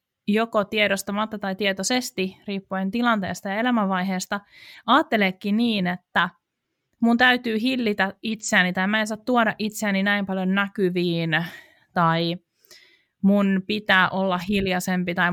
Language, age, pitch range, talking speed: Finnish, 30-49, 175-210 Hz, 115 wpm